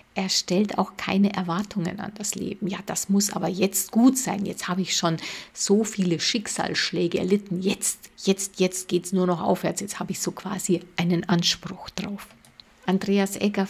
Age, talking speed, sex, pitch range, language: 50-69, 180 wpm, female, 180-200 Hz, German